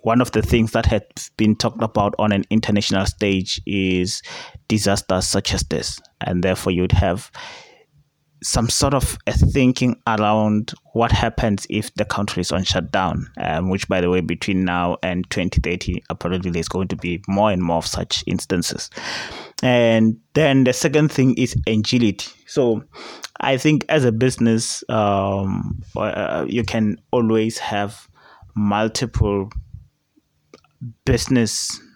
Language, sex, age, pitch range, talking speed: English, male, 20-39, 95-115 Hz, 145 wpm